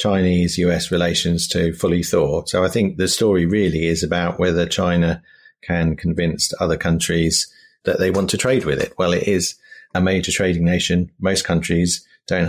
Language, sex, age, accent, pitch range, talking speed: English, male, 40-59, British, 85-95 Hz, 175 wpm